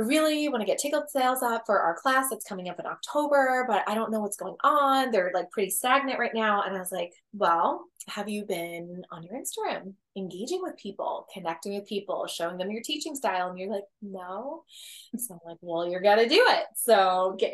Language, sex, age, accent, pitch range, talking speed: English, female, 20-39, American, 185-240 Hz, 220 wpm